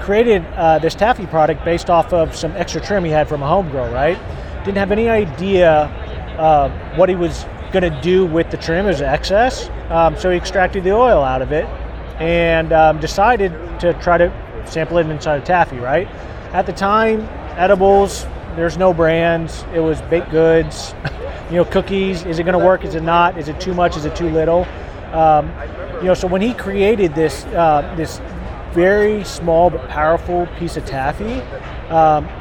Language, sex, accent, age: English, male, American, 20-39